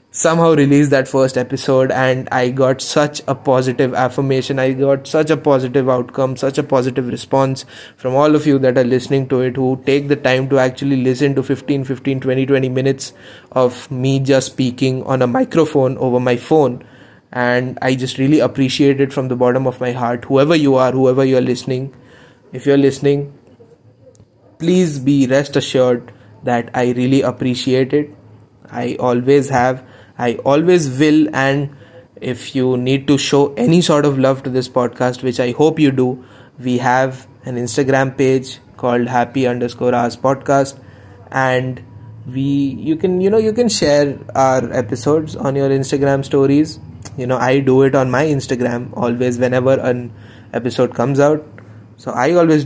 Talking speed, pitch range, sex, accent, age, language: 170 wpm, 125-140 Hz, male, native, 20-39, Hindi